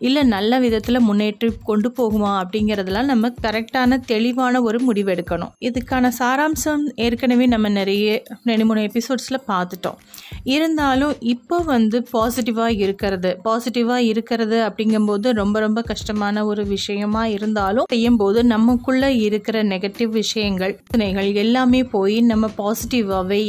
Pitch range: 205-245 Hz